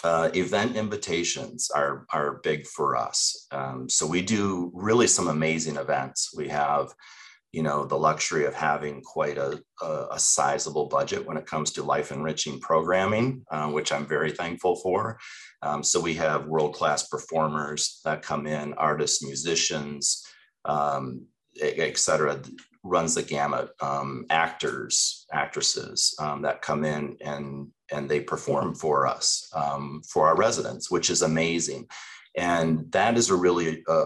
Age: 30-49